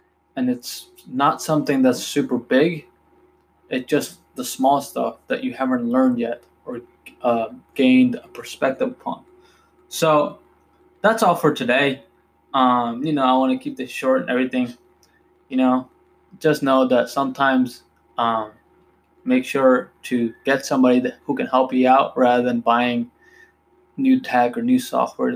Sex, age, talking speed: male, 20-39, 150 wpm